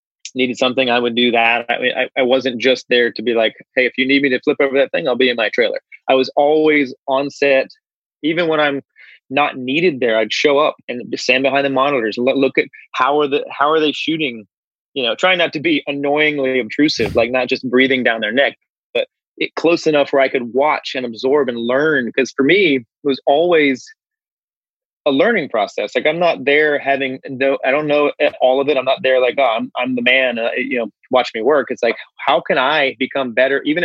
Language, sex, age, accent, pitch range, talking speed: English, male, 30-49, American, 130-155 Hz, 230 wpm